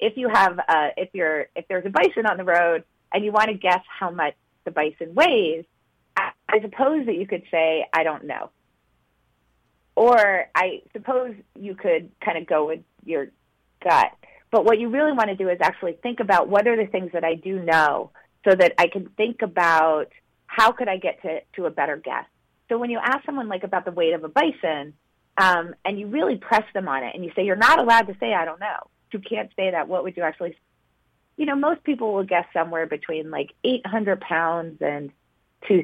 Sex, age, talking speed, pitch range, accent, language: female, 30-49, 220 wpm, 165-225 Hz, American, English